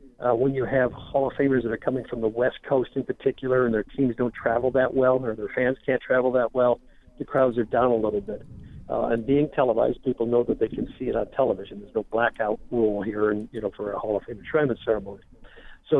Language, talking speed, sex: English, 250 wpm, male